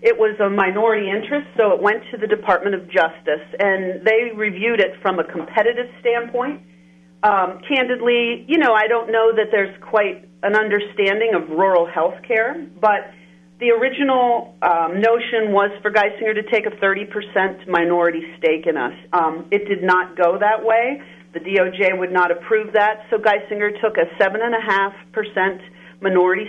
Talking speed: 165 wpm